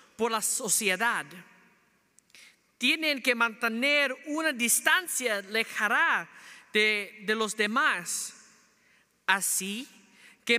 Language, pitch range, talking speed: English, 200-250 Hz, 85 wpm